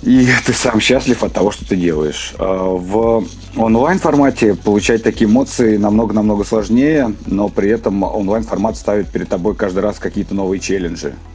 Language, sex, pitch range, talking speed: Russian, male, 85-100 Hz, 150 wpm